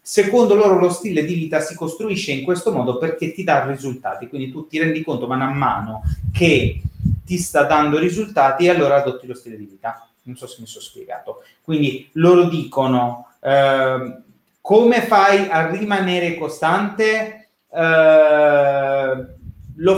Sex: male